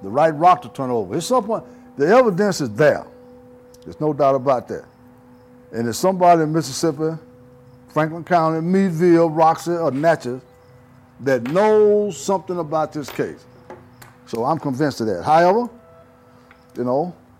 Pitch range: 110-155 Hz